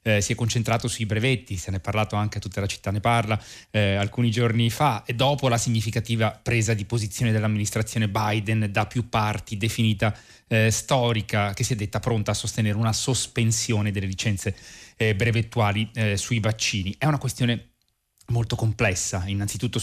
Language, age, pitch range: Italian, 30-49, 105-120 Hz